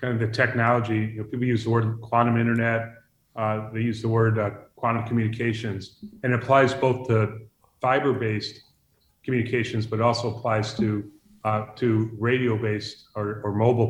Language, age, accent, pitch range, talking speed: English, 40-59, American, 110-125 Hz, 165 wpm